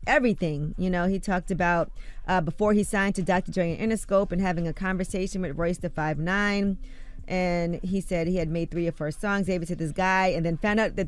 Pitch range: 170-195 Hz